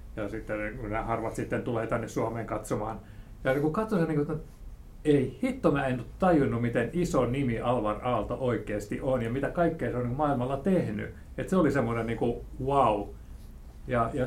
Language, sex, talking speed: Finnish, male, 195 wpm